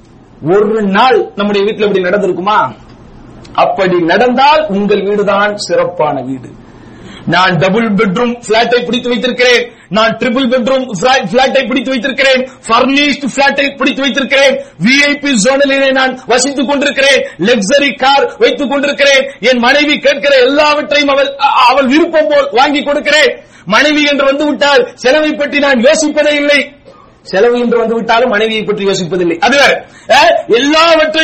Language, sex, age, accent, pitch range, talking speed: English, male, 50-69, Indian, 245-290 Hz, 55 wpm